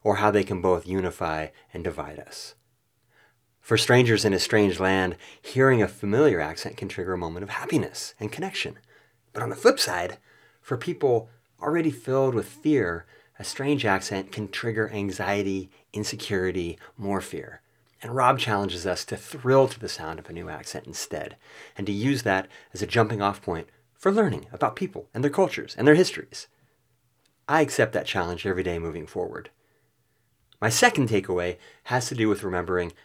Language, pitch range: English, 95-130 Hz